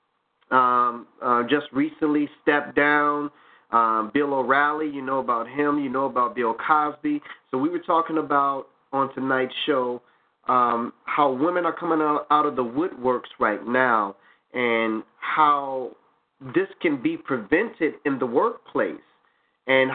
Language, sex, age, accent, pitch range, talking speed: English, male, 30-49, American, 135-165 Hz, 145 wpm